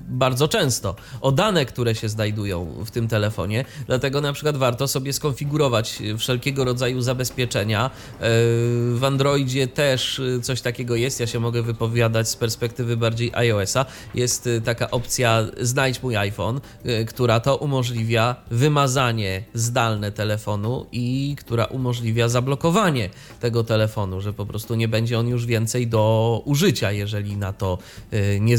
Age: 20-39